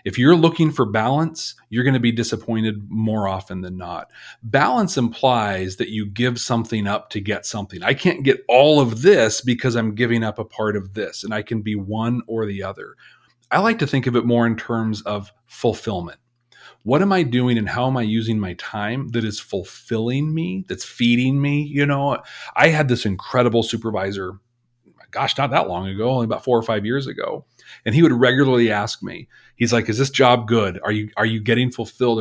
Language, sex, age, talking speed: English, male, 40-59, 210 wpm